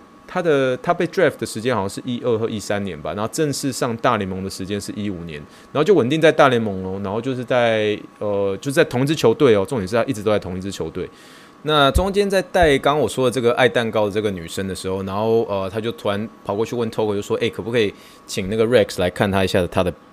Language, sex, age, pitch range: Chinese, male, 20-39, 95-115 Hz